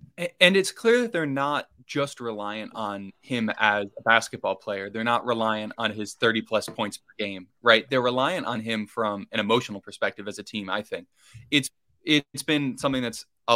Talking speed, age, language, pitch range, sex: 195 wpm, 20-39, English, 105-125 Hz, male